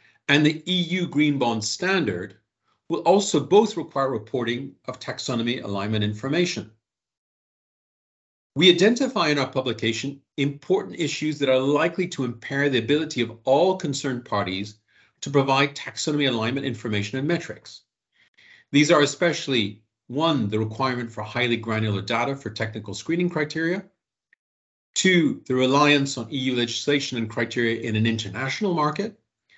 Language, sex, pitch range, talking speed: English, male, 115-165 Hz, 135 wpm